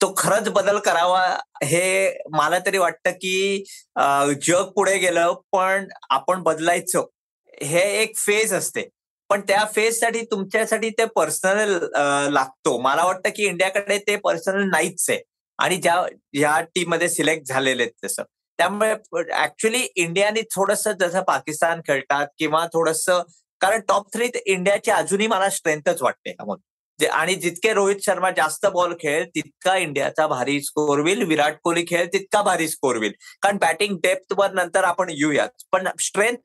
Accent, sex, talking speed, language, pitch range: native, male, 140 wpm, Marathi, 155-200 Hz